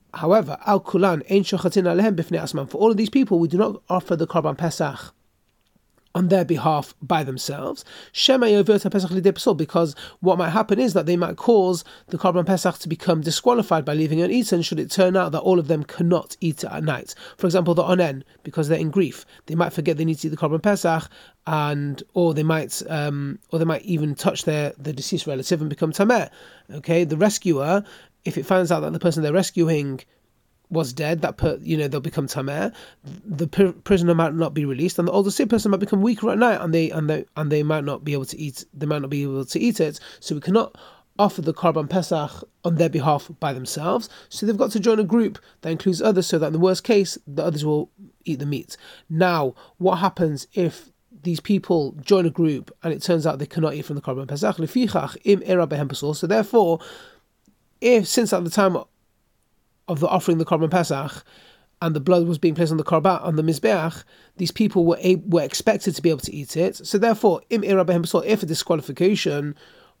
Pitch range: 155-190 Hz